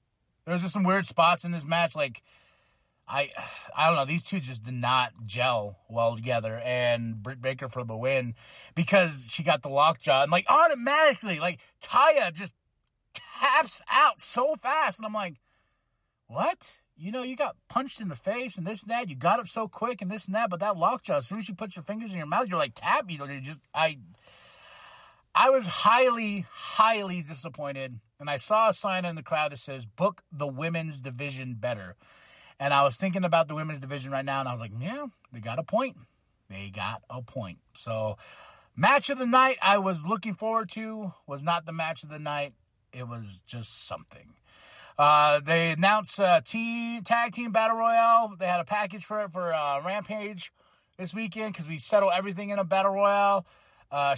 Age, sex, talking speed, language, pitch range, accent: 30-49, male, 200 wpm, English, 135-210 Hz, American